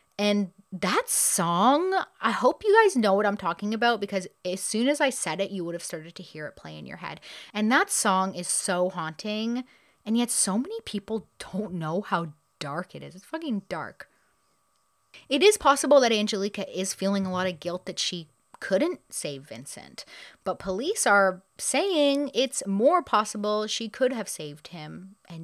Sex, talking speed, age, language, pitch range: female, 185 wpm, 30-49, English, 170-230 Hz